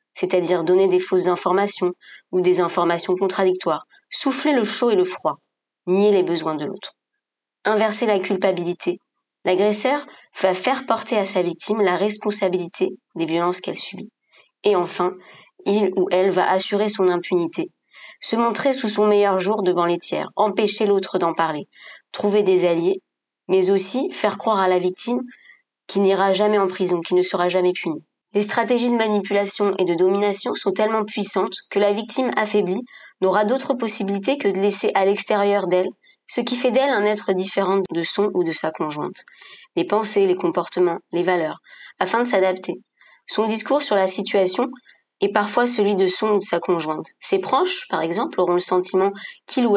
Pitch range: 185-220 Hz